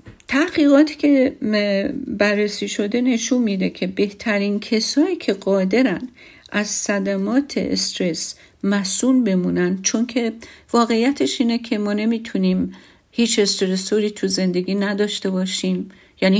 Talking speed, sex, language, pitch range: 110 wpm, female, Persian, 185-230 Hz